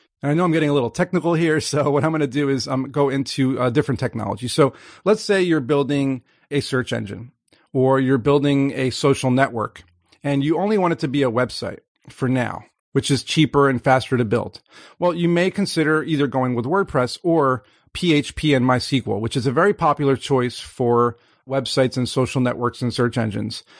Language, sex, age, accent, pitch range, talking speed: English, male, 40-59, American, 125-155 Hz, 205 wpm